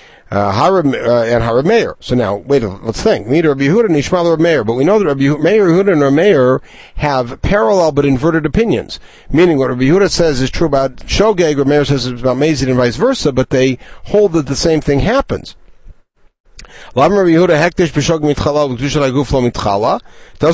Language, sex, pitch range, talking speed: English, male, 130-175 Hz, 190 wpm